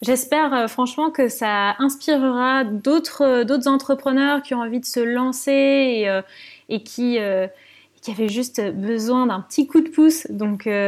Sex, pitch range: female, 215-270 Hz